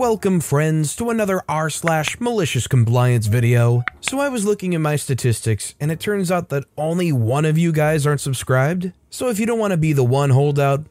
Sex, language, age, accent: male, English, 20-39, American